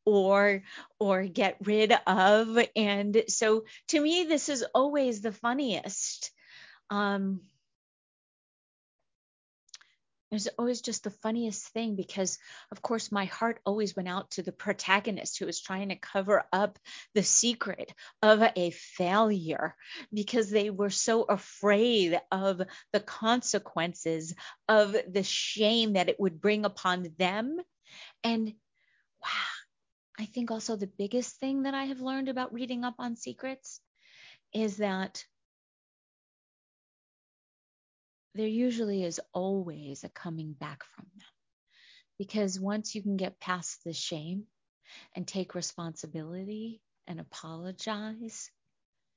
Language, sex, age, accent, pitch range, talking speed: English, female, 40-59, American, 190-225 Hz, 125 wpm